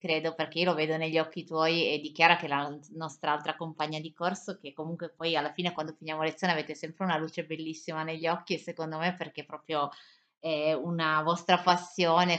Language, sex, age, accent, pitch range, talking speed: Italian, female, 20-39, native, 150-170 Hz, 205 wpm